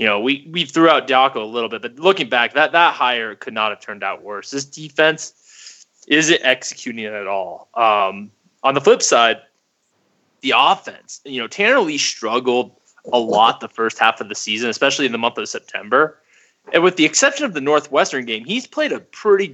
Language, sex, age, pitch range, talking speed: English, male, 20-39, 120-155 Hz, 205 wpm